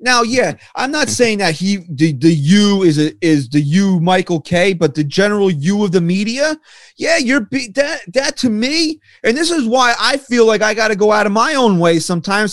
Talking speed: 230 wpm